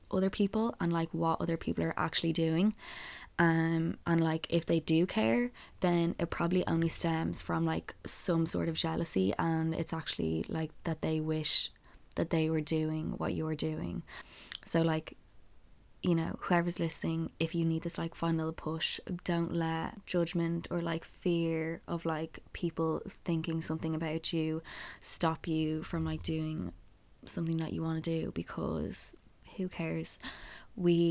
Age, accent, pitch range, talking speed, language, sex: 20-39, Irish, 155-170 Hz, 160 wpm, English, female